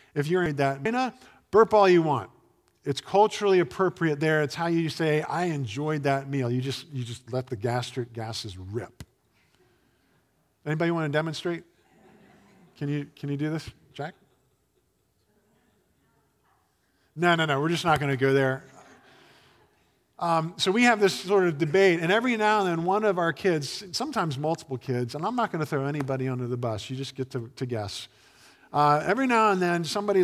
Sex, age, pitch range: male, 50-69, 130-175 Hz